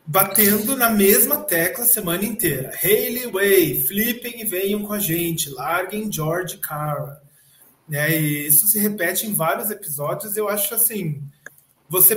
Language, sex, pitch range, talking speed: Portuguese, male, 170-220 Hz, 145 wpm